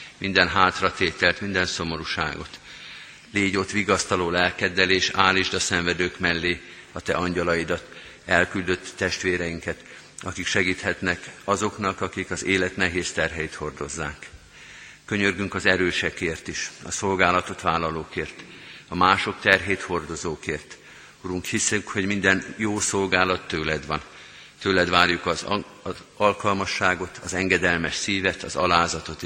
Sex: male